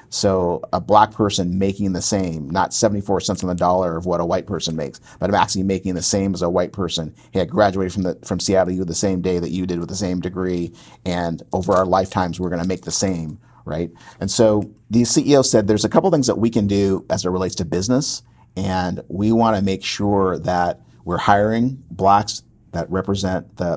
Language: English